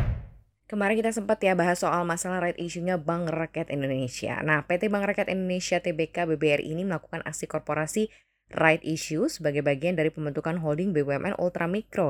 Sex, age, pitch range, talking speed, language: female, 10-29, 160-215 Hz, 165 wpm, Indonesian